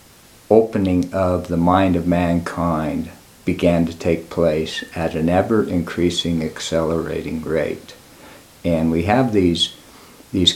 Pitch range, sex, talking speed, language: 85-95 Hz, male, 115 wpm, English